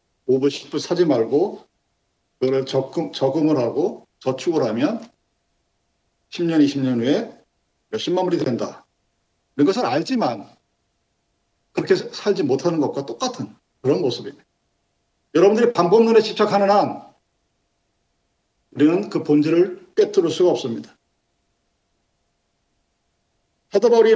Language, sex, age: Korean, male, 50-69